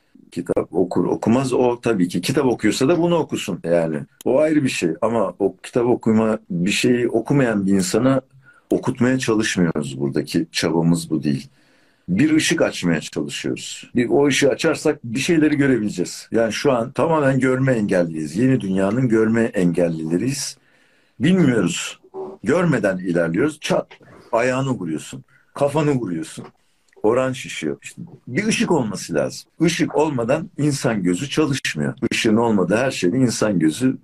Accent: native